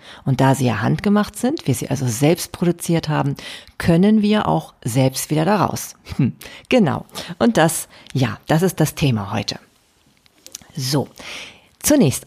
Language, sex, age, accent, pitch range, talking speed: German, female, 40-59, German, 140-195 Hz, 140 wpm